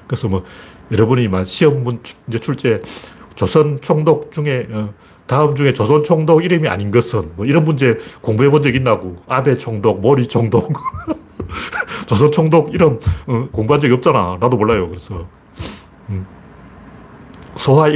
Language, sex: Korean, male